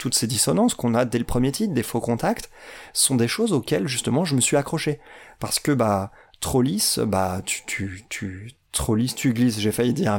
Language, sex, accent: French, male, French